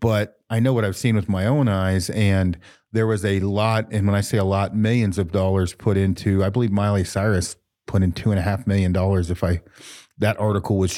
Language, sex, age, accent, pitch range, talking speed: English, male, 40-59, American, 100-125 Hz, 235 wpm